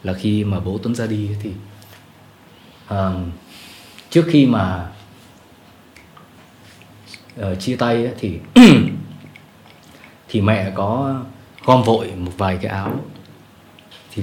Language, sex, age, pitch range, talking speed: Vietnamese, male, 20-39, 100-125 Hz, 110 wpm